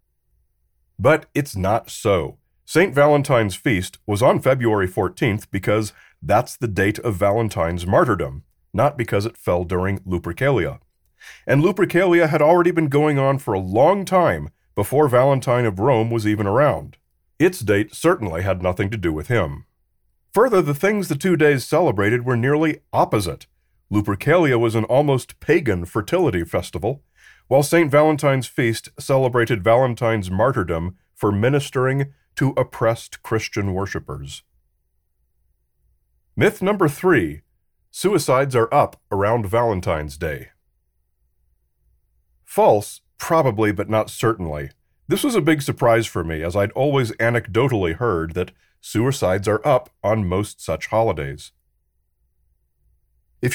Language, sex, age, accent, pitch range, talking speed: English, male, 40-59, American, 85-135 Hz, 130 wpm